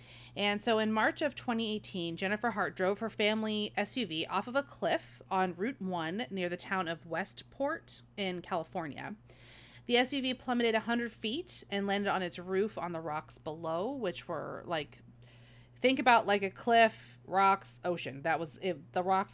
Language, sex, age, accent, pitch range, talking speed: English, female, 30-49, American, 170-225 Hz, 170 wpm